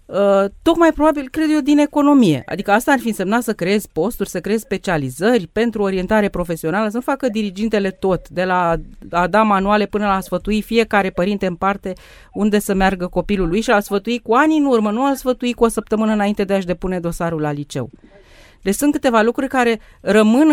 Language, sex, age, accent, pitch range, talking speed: Romanian, female, 30-49, native, 195-245 Hz, 205 wpm